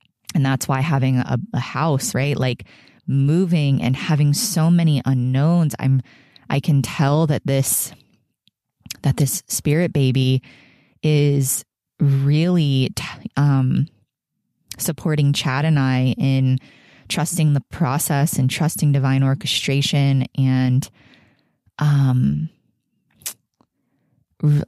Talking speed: 105 wpm